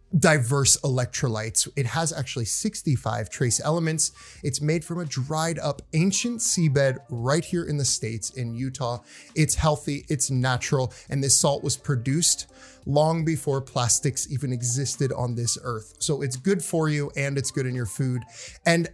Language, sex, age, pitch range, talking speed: English, male, 30-49, 125-165 Hz, 165 wpm